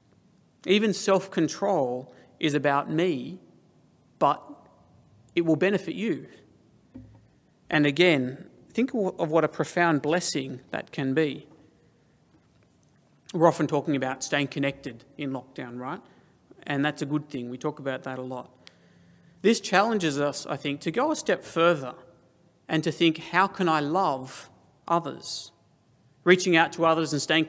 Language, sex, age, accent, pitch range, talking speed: English, male, 40-59, Australian, 140-180 Hz, 145 wpm